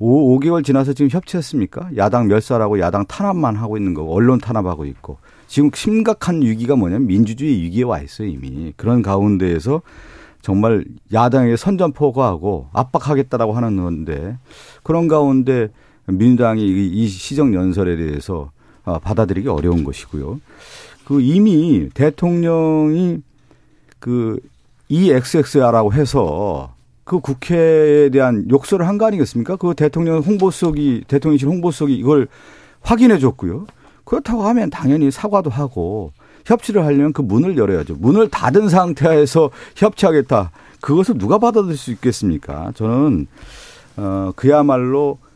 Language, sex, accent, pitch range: Korean, male, native, 100-155 Hz